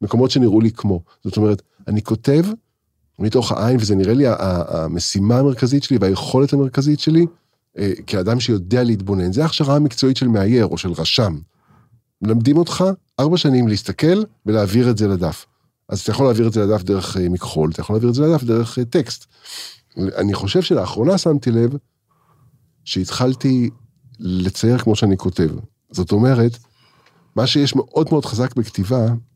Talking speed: 135 wpm